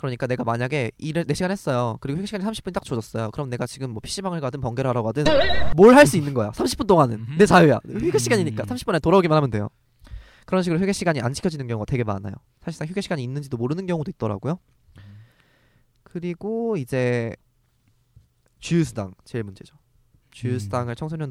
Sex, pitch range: male, 115-160 Hz